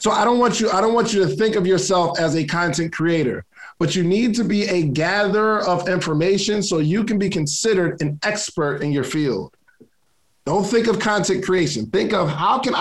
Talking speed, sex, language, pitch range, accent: 210 wpm, male, English, 165-210 Hz, American